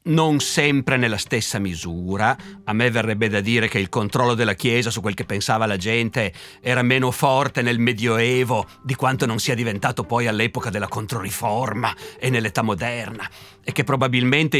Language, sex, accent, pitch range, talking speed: Italian, male, native, 115-145 Hz, 170 wpm